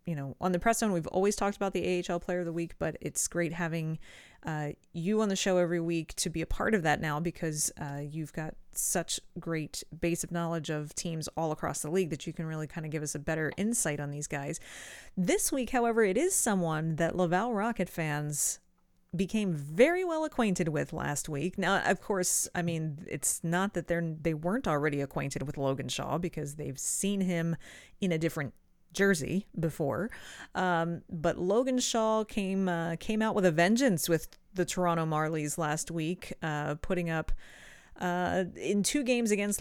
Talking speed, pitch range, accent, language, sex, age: 195 wpm, 155-185 Hz, American, English, female, 30-49